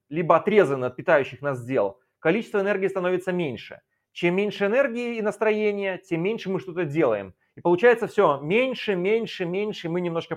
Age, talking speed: 30-49, 170 wpm